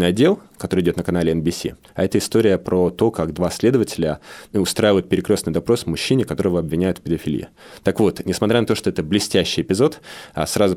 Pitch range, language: 85-100 Hz, Russian